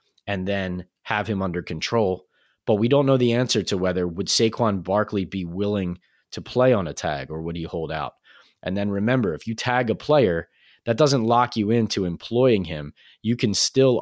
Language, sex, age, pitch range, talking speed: English, male, 20-39, 90-120 Hz, 200 wpm